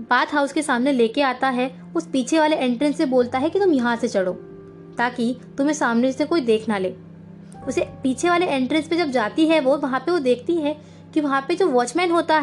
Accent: native